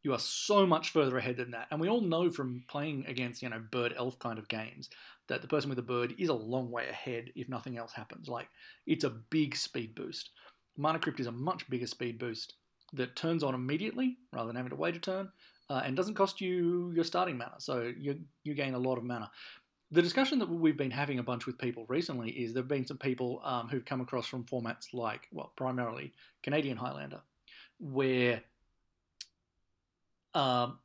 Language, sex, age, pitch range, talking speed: English, male, 40-59, 115-150 Hz, 210 wpm